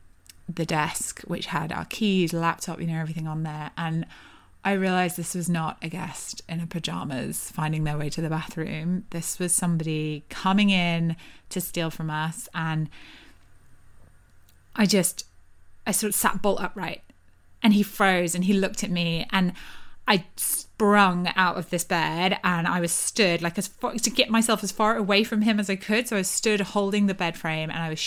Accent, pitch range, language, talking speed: British, 165-200 Hz, English, 190 wpm